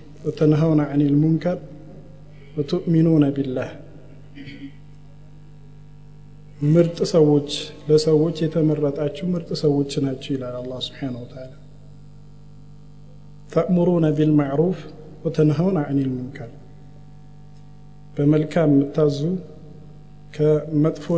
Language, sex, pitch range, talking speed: Amharic, male, 145-160 Hz, 65 wpm